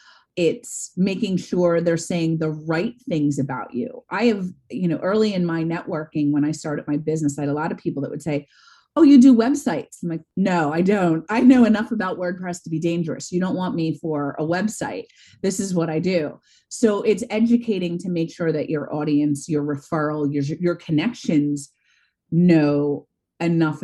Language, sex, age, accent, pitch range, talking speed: English, female, 30-49, American, 150-195 Hz, 195 wpm